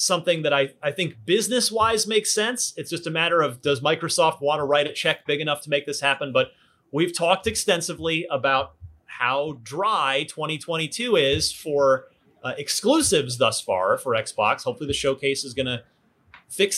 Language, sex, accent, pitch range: English, male, American, 135-175 Hz